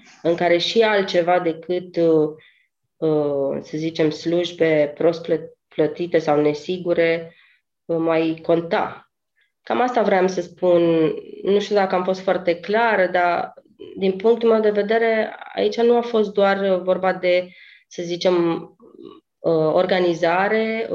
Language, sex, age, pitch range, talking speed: Romanian, female, 20-39, 165-195 Hz, 120 wpm